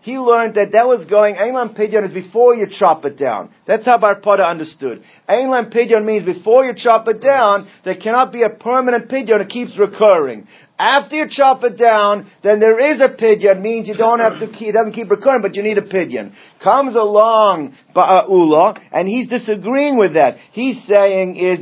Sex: male